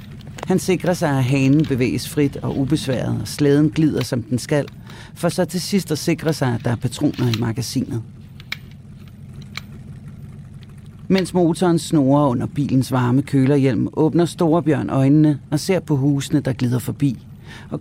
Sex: male